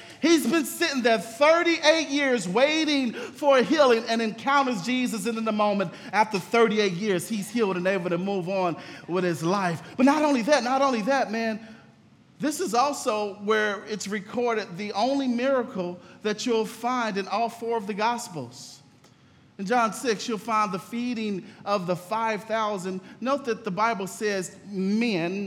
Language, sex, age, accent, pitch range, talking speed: English, male, 40-59, American, 185-235 Hz, 165 wpm